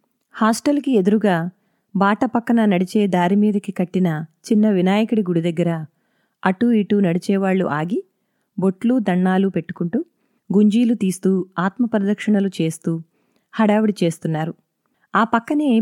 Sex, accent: female, native